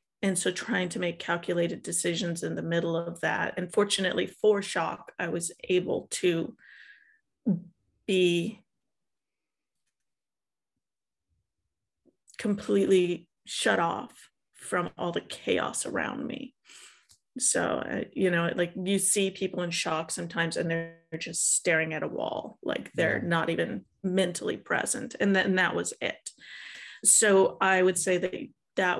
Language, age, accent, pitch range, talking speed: English, 30-49, American, 175-195 Hz, 135 wpm